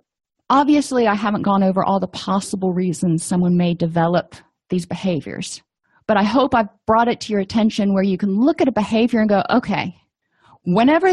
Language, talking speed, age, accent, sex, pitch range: English, 185 wpm, 40-59, American, female, 190-235 Hz